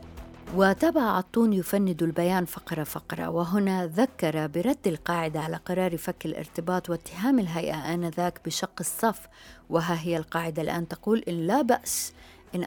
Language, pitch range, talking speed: Arabic, 165-200 Hz, 135 wpm